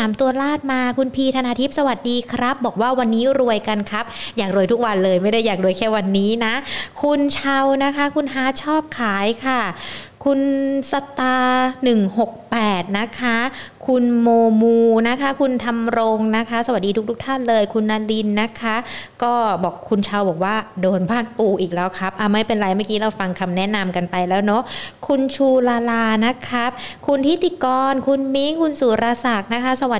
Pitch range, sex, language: 215-260 Hz, female, Thai